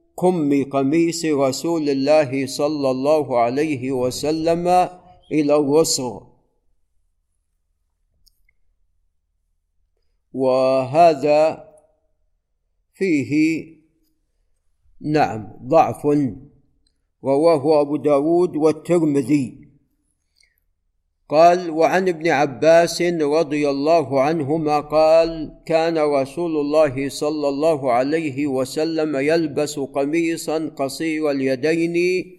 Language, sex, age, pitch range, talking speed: Arabic, male, 50-69, 130-160 Hz, 70 wpm